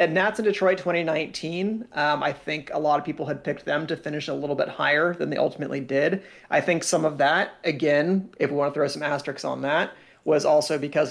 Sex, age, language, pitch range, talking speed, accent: male, 30-49, English, 135-155 Hz, 230 wpm, American